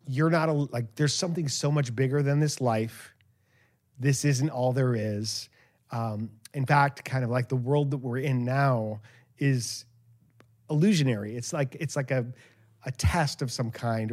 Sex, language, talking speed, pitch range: male, English, 170 wpm, 120-145 Hz